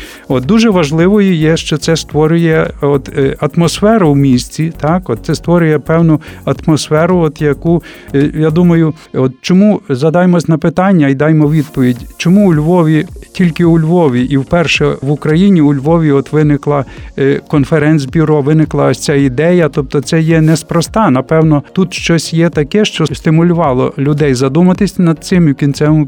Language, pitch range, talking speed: Ukrainian, 145-170 Hz, 150 wpm